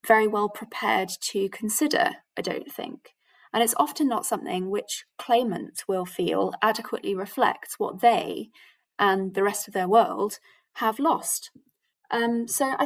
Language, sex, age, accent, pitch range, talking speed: English, female, 20-39, British, 195-265 Hz, 150 wpm